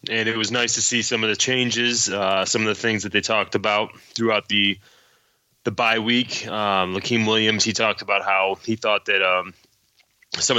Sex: male